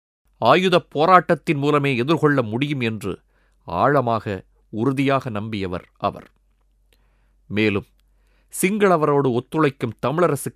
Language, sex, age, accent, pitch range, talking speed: Tamil, male, 30-49, native, 100-145 Hz, 80 wpm